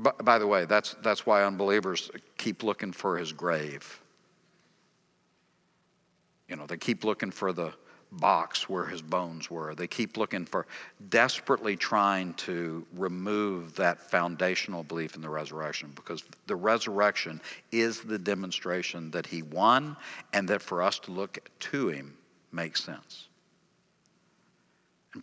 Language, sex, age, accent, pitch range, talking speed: English, male, 60-79, American, 90-110 Hz, 140 wpm